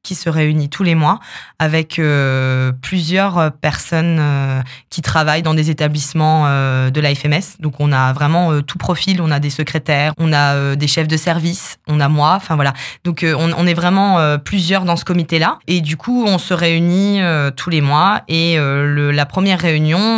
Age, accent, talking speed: 20-39, French, 210 wpm